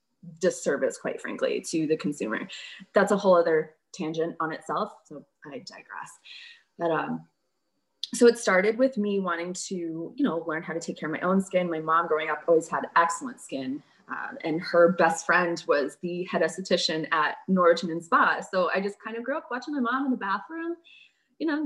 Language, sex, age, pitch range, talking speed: English, female, 20-39, 170-230 Hz, 200 wpm